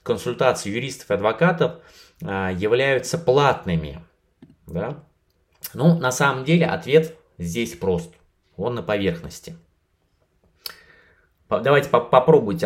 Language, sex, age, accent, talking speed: Russian, male, 20-39, native, 85 wpm